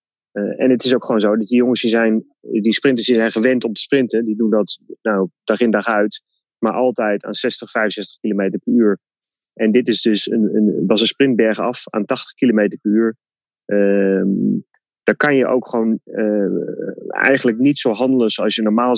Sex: male